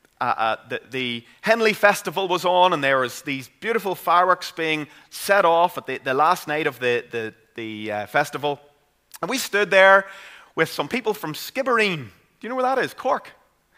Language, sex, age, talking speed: English, male, 30-49, 185 wpm